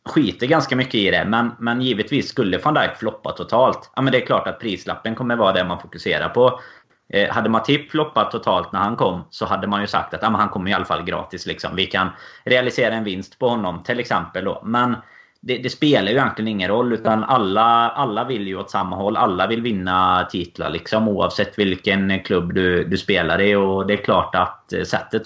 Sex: male